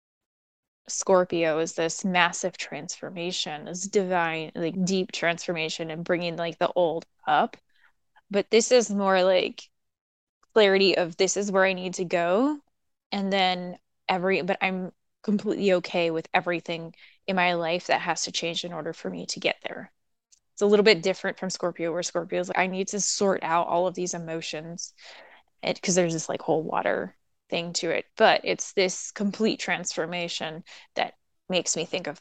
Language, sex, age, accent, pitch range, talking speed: English, female, 10-29, American, 170-195 Hz, 170 wpm